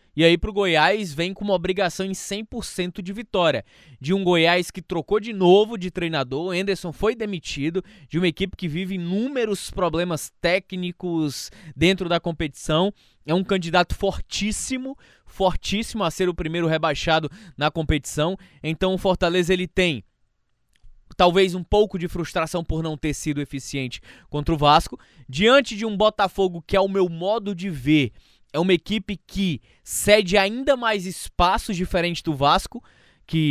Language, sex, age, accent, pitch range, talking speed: Portuguese, male, 20-39, Brazilian, 160-205 Hz, 160 wpm